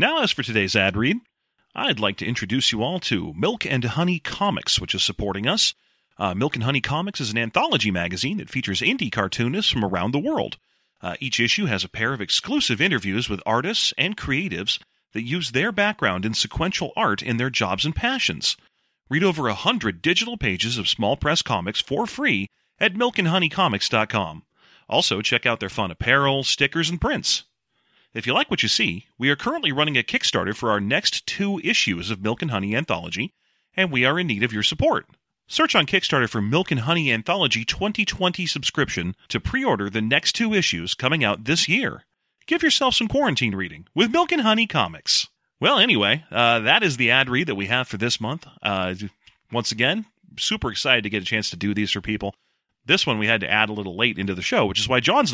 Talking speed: 205 wpm